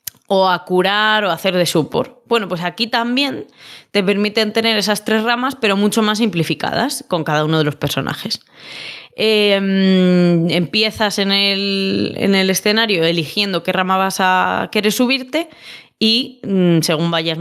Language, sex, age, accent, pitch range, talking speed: Spanish, female, 20-39, Spanish, 175-220 Hz, 155 wpm